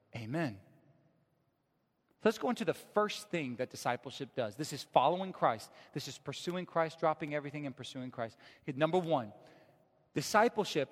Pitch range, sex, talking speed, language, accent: 140-185 Hz, male, 145 wpm, English, American